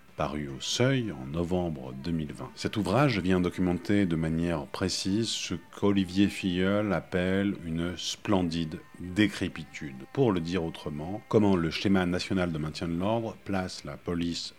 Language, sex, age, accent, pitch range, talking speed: French, male, 50-69, French, 80-95 Hz, 145 wpm